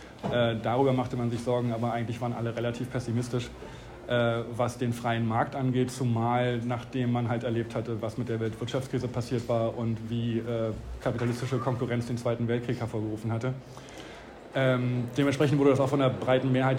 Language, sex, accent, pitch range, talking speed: German, male, German, 120-140 Hz, 175 wpm